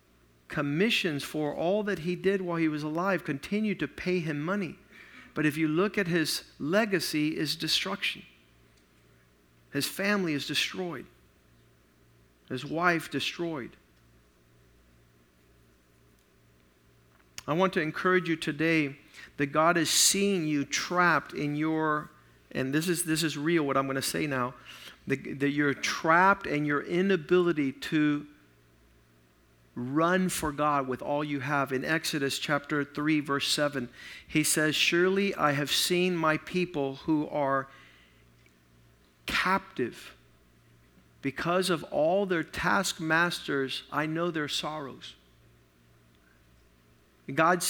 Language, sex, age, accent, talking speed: English, male, 50-69, American, 125 wpm